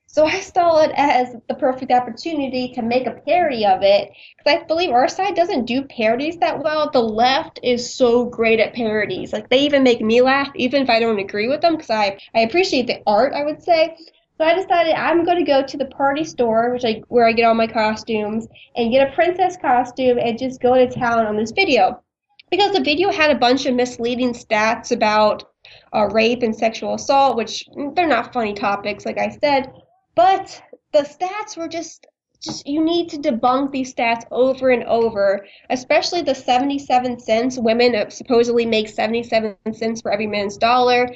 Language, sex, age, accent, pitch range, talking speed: English, female, 10-29, American, 225-295 Hz, 200 wpm